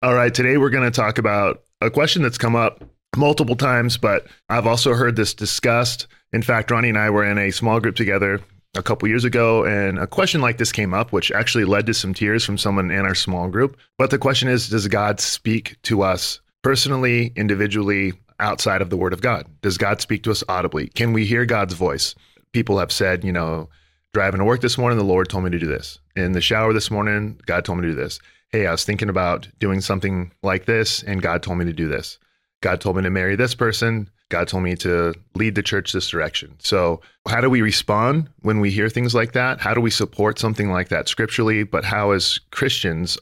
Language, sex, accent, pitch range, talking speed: English, male, American, 95-115 Hz, 230 wpm